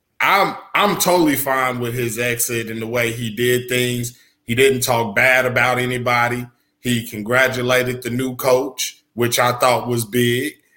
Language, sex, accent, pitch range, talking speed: English, male, American, 130-210 Hz, 160 wpm